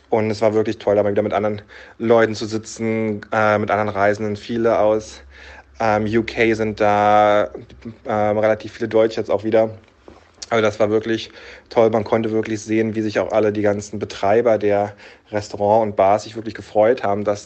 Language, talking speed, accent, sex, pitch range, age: German, 190 wpm, German, male, 105-120 Hz, 20-39